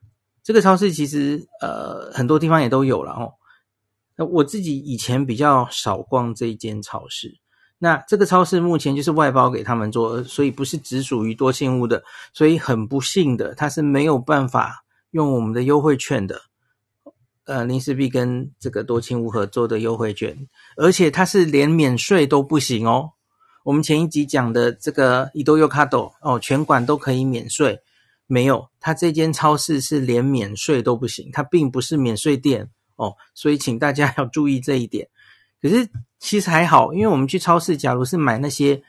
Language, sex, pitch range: Chinese, male, 120-155 Hz